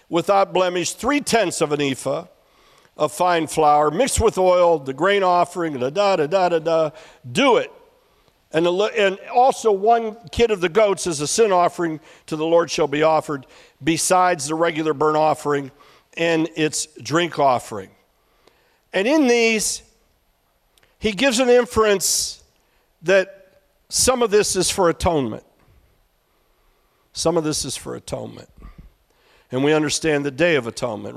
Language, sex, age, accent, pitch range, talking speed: English, male, 60-79, American, 155-200 Hz, 135 wpm